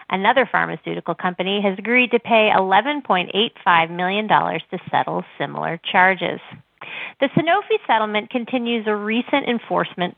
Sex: female